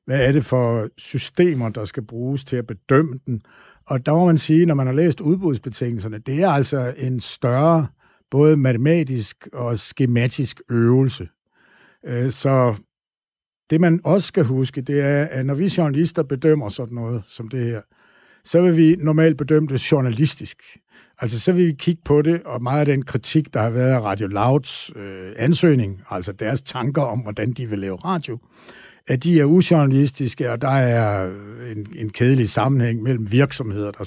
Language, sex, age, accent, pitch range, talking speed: Danish, male, 60-79, native, 120-160 Hz, 175 wpm